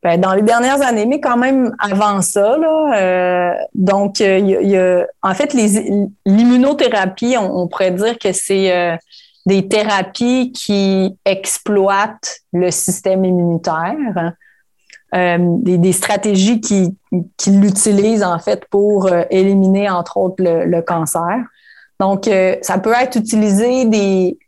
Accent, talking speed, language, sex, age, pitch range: Canadian, 150 wpm, French, female, 30-49, 185-215 Hz